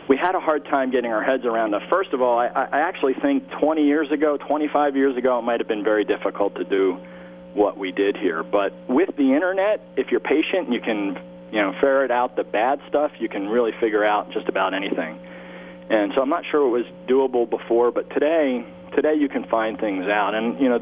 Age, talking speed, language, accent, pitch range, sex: 40-59, 230 wpm, English, American, 90-140 Hz, male